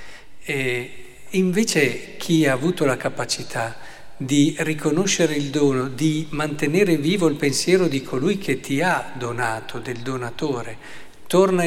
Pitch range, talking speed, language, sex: 125-160 Hz, 130 wpm, Italian, male